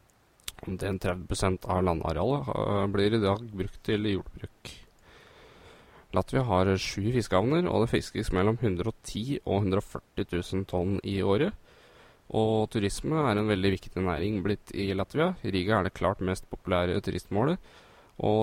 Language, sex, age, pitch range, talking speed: English, male, 20-39, 95-110 Hz, 150 wpm